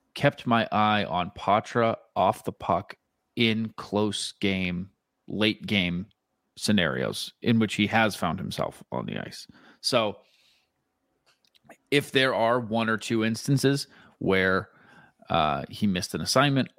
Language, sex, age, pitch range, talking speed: English, male, 30-49, 100-120 Hz, 130 wpm